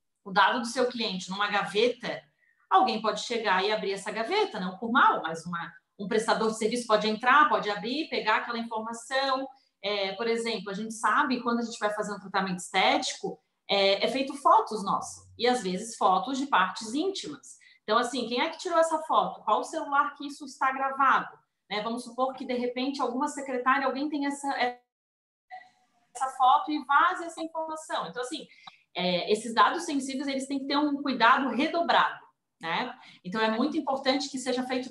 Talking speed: 185 wpm